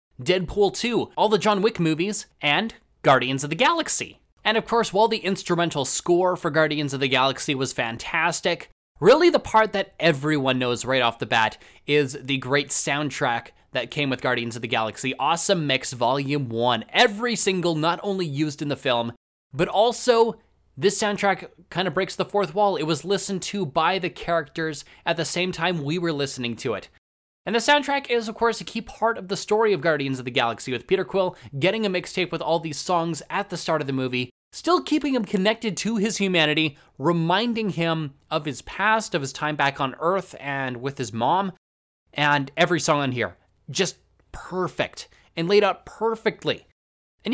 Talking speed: 195 wpm